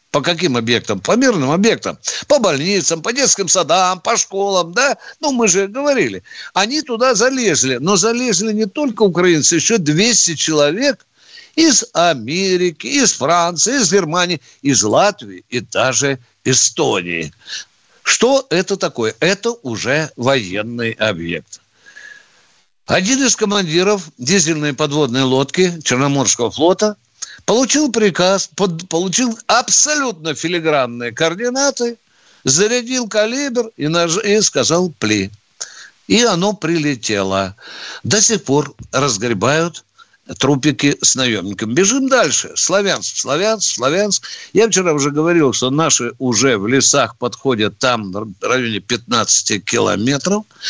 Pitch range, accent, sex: 135-220 Hz, native, male